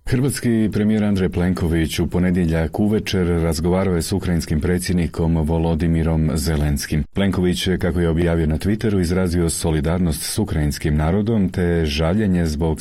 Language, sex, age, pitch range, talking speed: Croatian, male, 40-59, 80-95 Hz, 135 wpm